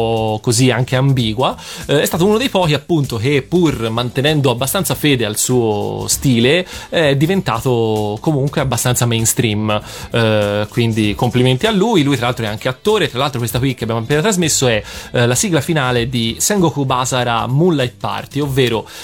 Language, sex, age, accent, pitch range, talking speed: Italian, male, 20-39, native, 115-140 Hz, 165 wpm